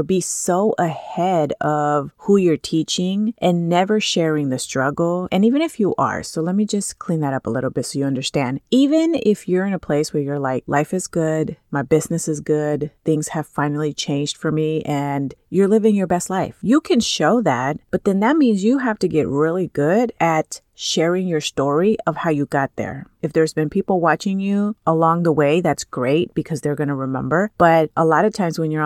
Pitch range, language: 145-185 Hz, English